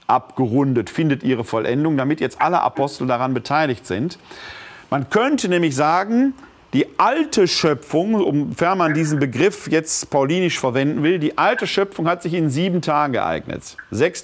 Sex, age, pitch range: male, 40-59, 130-180 Hz